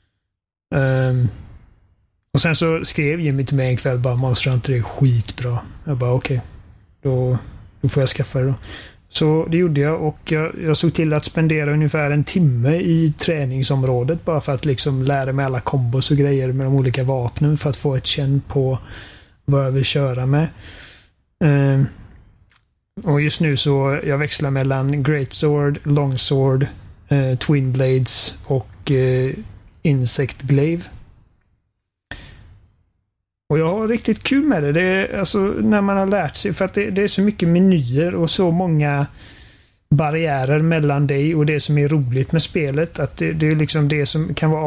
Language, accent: Swedish, native